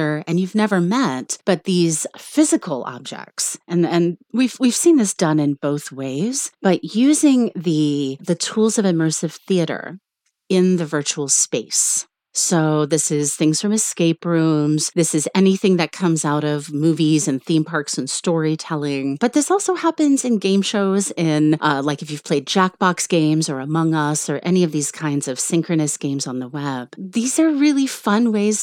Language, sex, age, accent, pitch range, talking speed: English, female, 30-49, American, 155-220 Hz, 175 wpm